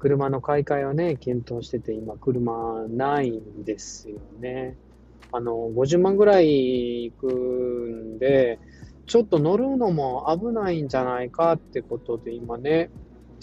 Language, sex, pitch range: Japanese, male, 110-170 Hz